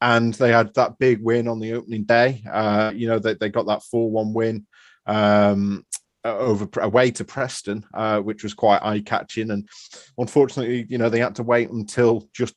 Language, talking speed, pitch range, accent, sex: English, 185 wpm, 105-115 Hz, British, male